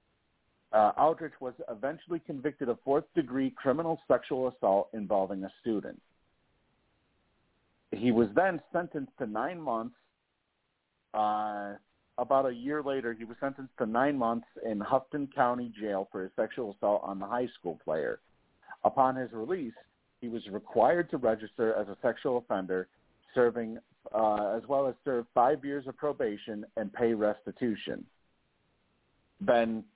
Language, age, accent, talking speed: English, 50-69, American, 140 wpm